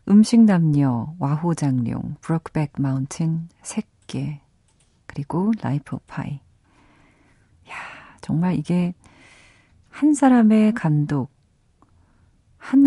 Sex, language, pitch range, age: female, Korean, 135-190 Hz, 40-59